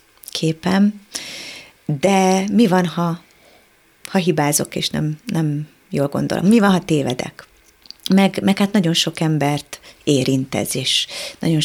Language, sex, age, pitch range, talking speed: Hungarian, female, 30-49, 155-190 Hz, 130 wpm